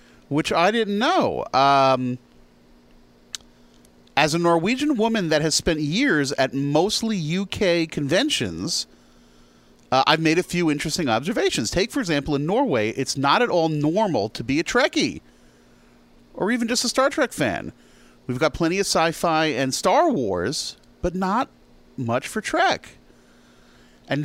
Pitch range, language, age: 125-180 Hz, English, 40-59